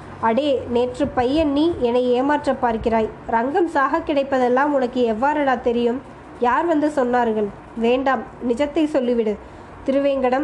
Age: 20-39